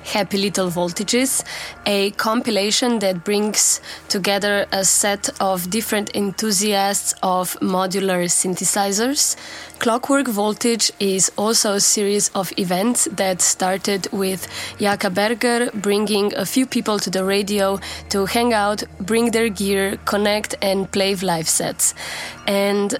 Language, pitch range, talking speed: French, 195-220 Hz, 125 wpm